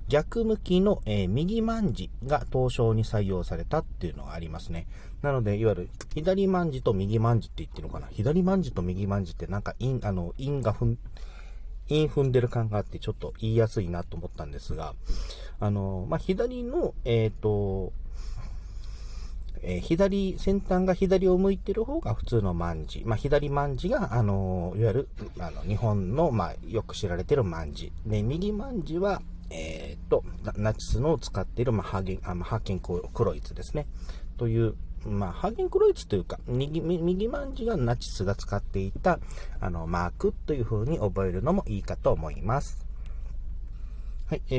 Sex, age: male, 40-59